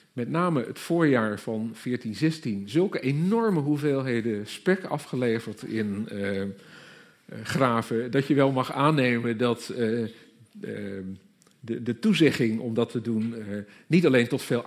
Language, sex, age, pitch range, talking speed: Dutch, male, 50-69, 110-150 Hz, 140 wpm